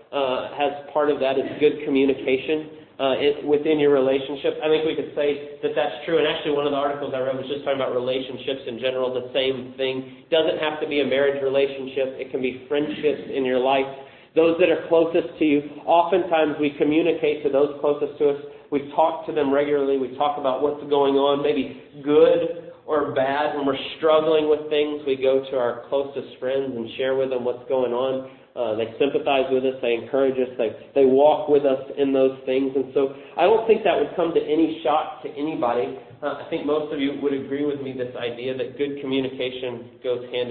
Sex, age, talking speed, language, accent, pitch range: male, 30-49, 215 wpm, English, American, 130-150 Hz